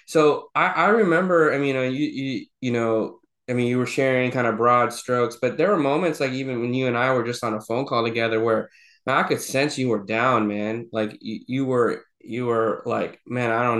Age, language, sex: 20-39, English, male